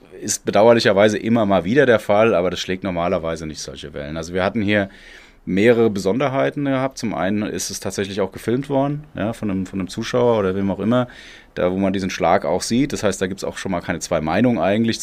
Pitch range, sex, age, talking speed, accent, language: 90-105 Hz, male, 30-49, 225 wpm, German, German